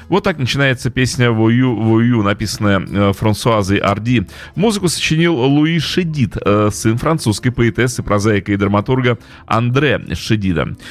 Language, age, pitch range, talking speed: Russian, 30-49, 105-140 Hz, 110 wpm